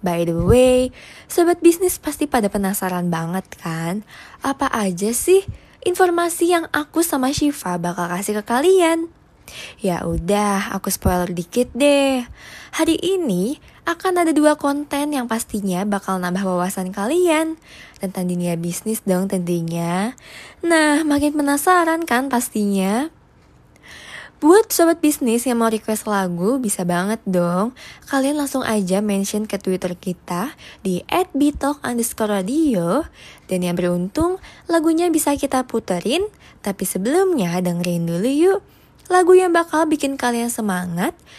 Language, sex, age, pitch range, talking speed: Indonesian, female, 20-39, 185-305 Hz, 130 wpm